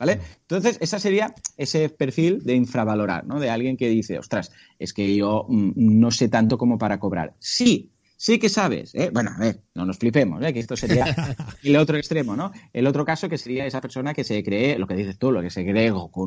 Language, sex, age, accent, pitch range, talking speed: Spanish, male, 30-49, Spanish, 110-155 Hz, 225 wpm